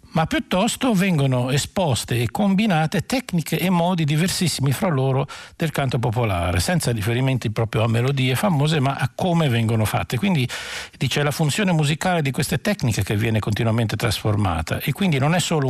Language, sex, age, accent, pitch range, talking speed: Italian, male, 60-79, native, 115-165 Hz, 165 wpm